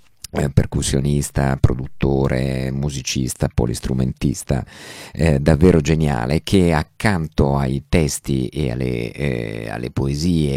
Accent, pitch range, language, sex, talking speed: native, 70-85 Hz, Italian, male, 90 wpm